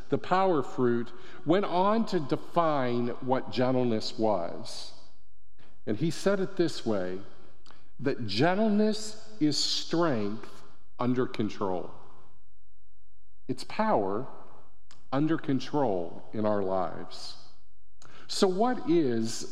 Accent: American